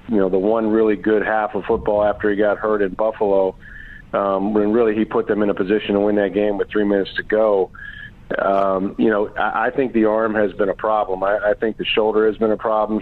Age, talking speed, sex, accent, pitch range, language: 40-59, 250 wpm, male, American, 100-115 Hz, English